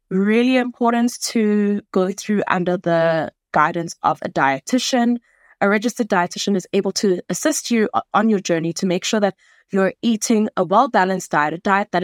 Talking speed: 170 wpm